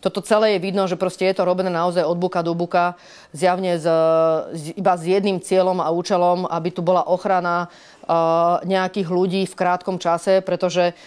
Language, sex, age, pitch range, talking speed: Slovak, female, 30-49, 175-200 Hz, 165 wpm